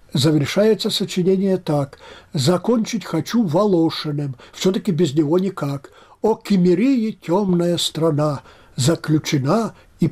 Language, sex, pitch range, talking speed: Russian, male, 150-190 Hz, 95 wpm